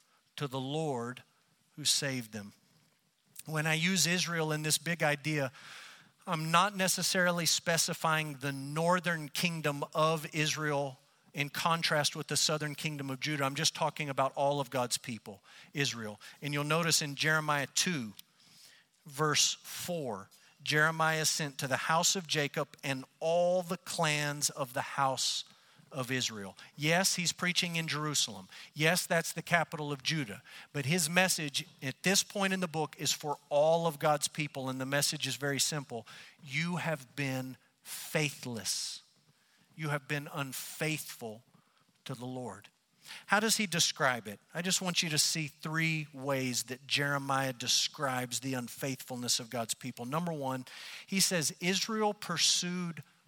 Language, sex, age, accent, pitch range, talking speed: English, male, 50-69, American, 135-165 Hz, 150 wpm